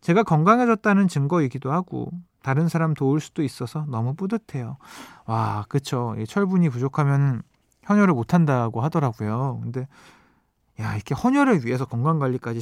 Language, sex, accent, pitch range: Korean, male, native, 125-180 Hz